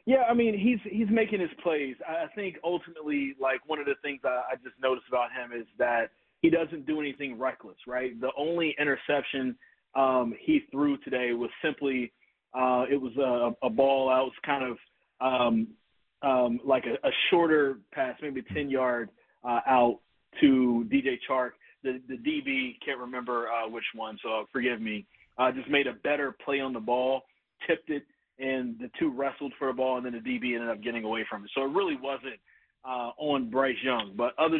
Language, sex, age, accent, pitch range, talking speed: English, male, 30-49, American, 125-145 Hz, 195 wpm